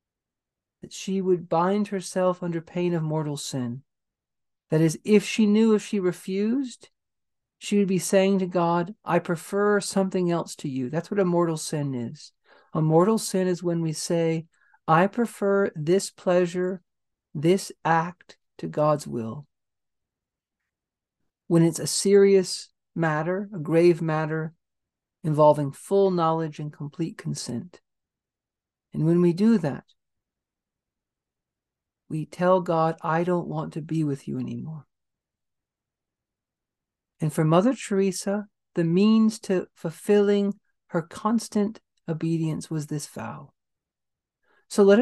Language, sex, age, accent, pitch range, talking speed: English, male, 50-69, American, 165-205 Hz, 130 wpm